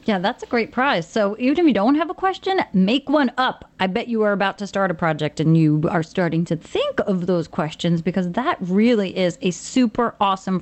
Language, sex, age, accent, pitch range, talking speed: English, female, 30-49, American, 190-250 Hz, 230 wpm